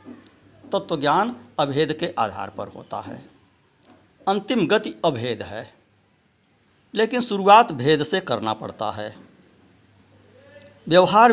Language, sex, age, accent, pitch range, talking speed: Hindi, male, 60-79, native, 105-175 Hz, 115 wpm